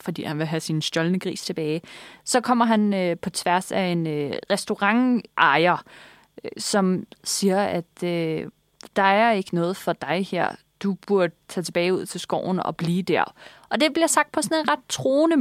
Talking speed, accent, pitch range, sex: 190 wpm, native, 175-215 Hz, female